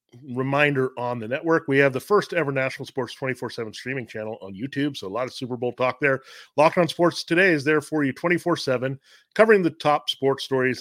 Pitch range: 120-155 Hz